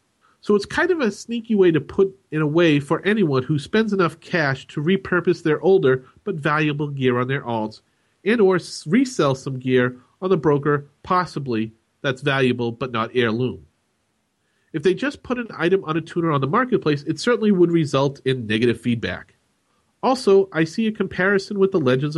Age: 40-59